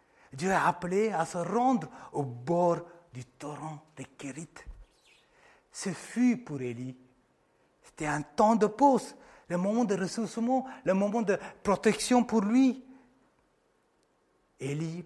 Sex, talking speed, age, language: male, 130 wpm, 60-79, French